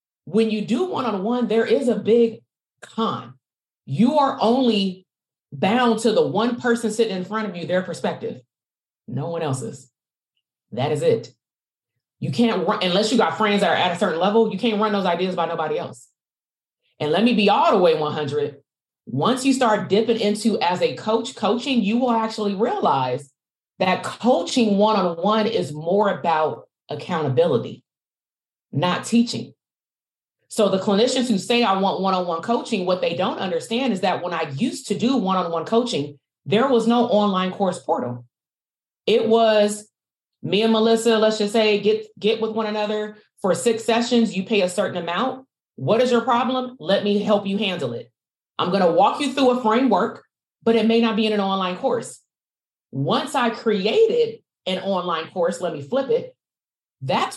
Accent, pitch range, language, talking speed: American, 185-235 Hz, English, 175 wpm